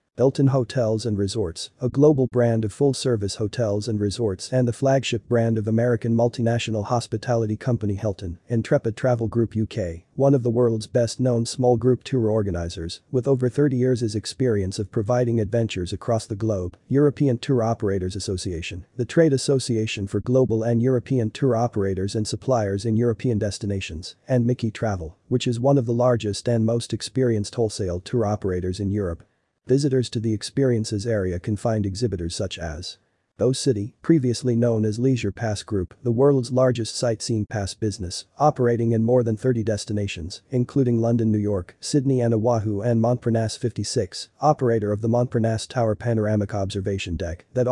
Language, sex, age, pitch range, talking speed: English, male, 40-59, 105-125 Hz, 160 wpm